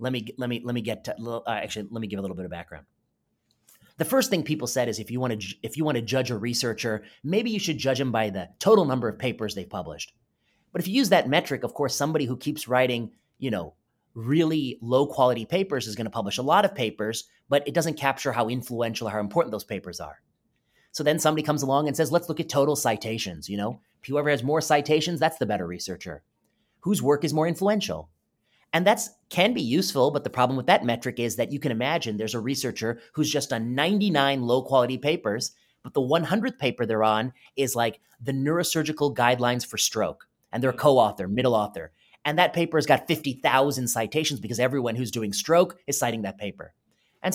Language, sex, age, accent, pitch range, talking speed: English, male, 30-49, American, 115-155 Hz, 220 wpm